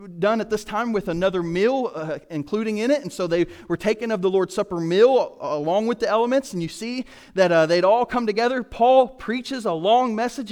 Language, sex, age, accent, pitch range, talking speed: English, male, 30-49, American, 145-210 Hz, 220 wpm